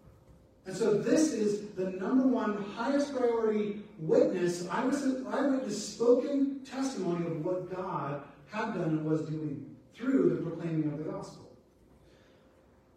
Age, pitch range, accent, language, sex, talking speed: 30-49, 155-215 Hz, American, English, male, 145 wpm